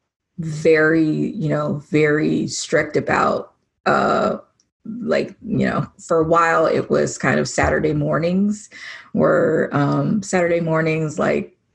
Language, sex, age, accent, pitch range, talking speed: English, female, 20-39, American, 155-195 Hz, 125 wpm